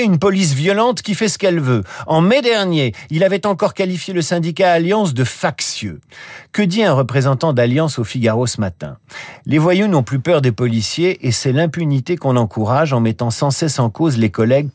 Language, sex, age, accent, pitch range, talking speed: French, male, 50-69, French, 125-180 Hz, 200 wpm